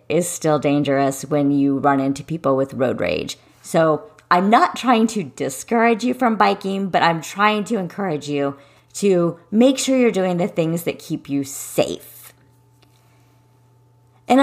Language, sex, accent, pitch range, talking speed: English, female, American, 145-230 Hz, 160 wpm